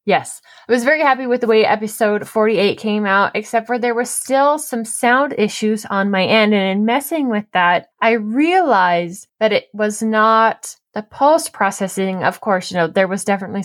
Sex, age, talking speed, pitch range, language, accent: female, 20-39, 195 wpm, 185-225 Hz, English, American